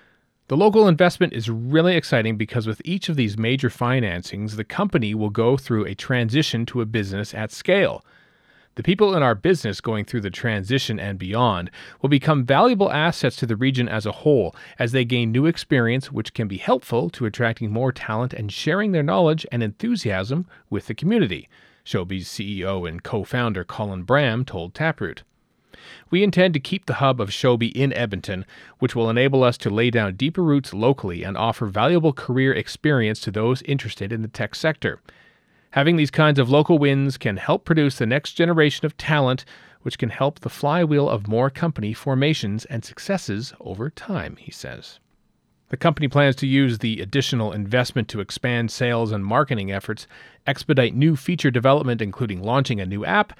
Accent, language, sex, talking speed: American, English, male, 180 wpm